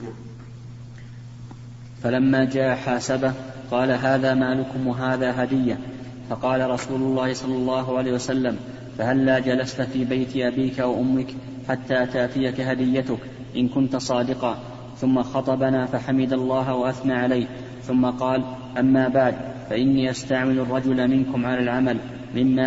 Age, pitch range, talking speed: 20-39, 125-130 Hz, 115 wpm